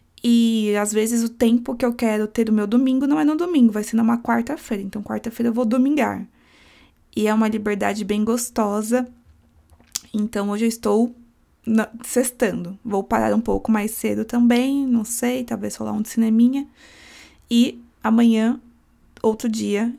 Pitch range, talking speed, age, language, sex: 205-235 Hz, 165 wpm, 20-39, Portuguese, female